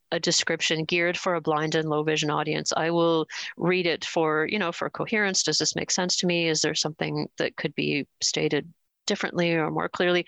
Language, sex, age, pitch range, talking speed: English, female, 40-59, 155-180 Hz, 210 wpm